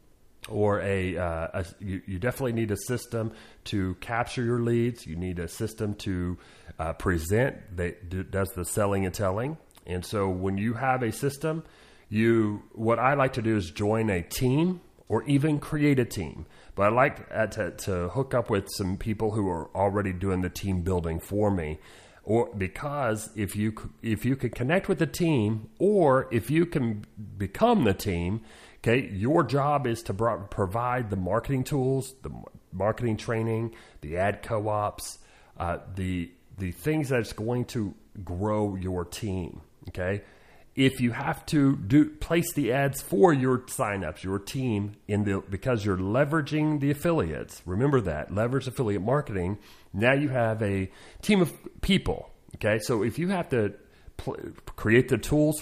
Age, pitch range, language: 40-59, 95-130 Hz, English